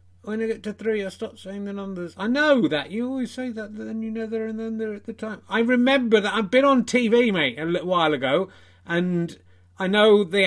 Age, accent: 30-49, British